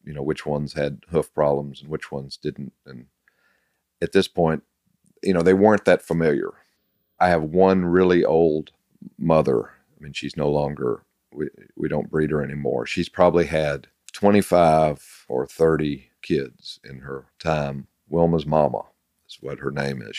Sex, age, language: male, 50-69, English